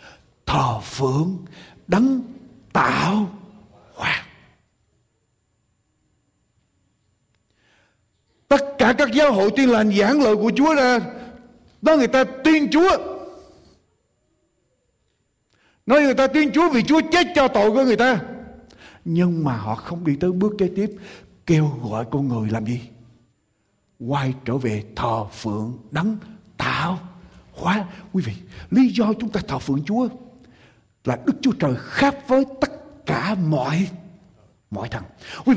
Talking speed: 135 wpm